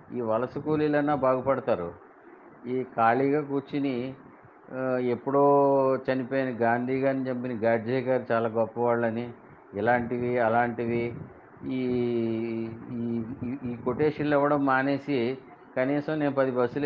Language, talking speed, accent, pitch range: Telugu, 95 wpm, native, 115-130 Hz